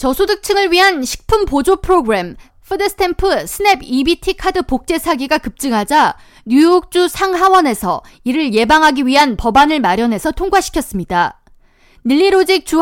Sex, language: female, Korean